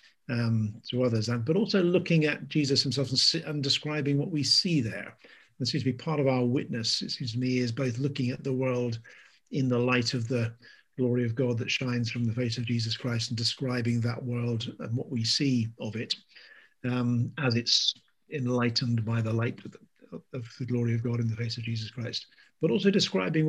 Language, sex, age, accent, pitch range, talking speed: English, male, 50-69, British, 115-140 Hz, 215 wpm